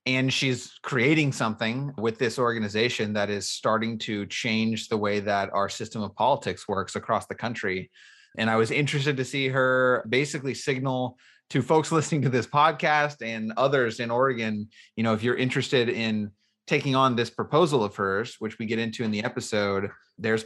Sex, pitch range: male, 105-135 Hz